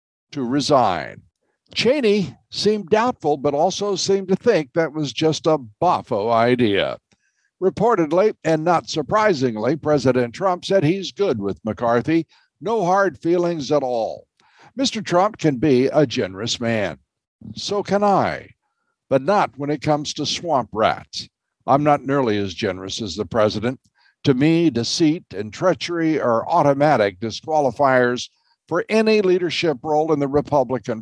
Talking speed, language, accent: 140 wpm, English, American